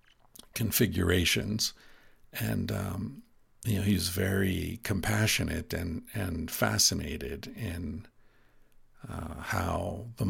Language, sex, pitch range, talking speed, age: English, male, 95-115 Hz, 85 wpm, 50-69